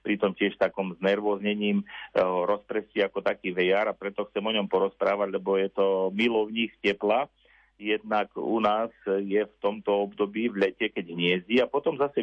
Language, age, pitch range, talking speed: Slovak, 50-69, 100-120 Hz, 160 wpm